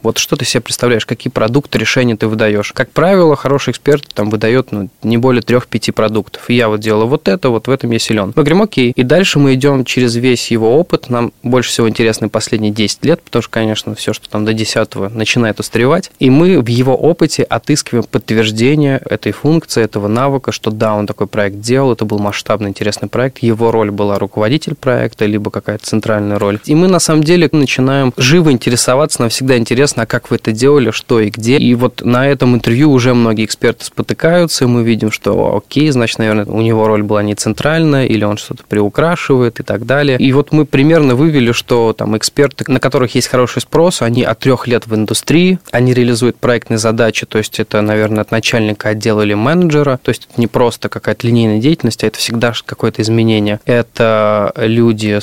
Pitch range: 110-135 Hz